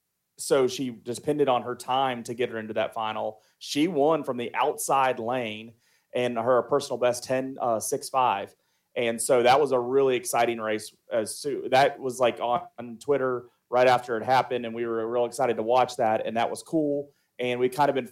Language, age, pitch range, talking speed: English, 30-49, 115-135 Hz, 200 wpm